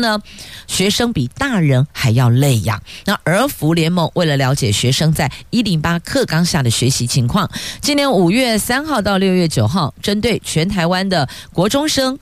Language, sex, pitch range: Chinese, female, 130-195 Hz